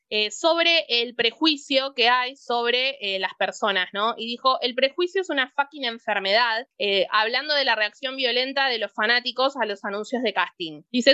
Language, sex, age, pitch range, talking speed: Spanish, female, 20-39, 220-295 Hz, 185 wpm